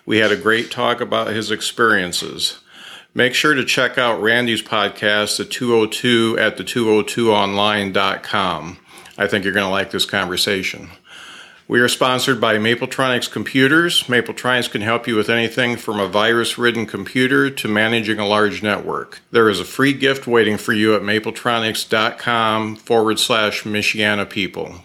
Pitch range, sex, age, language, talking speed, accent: 110-125 Hz, male, 50-69, English, 150 wpm, American